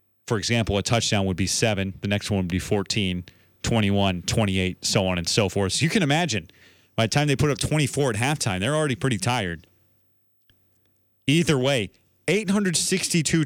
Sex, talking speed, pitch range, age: male, 175 wpm, 95-130 Hz, 30-49